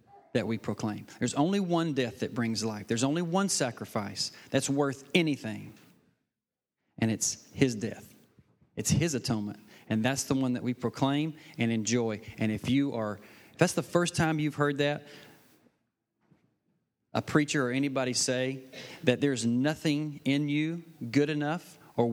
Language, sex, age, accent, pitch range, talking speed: English, male, 40-59, American, 120-145 Hz, 155 wpm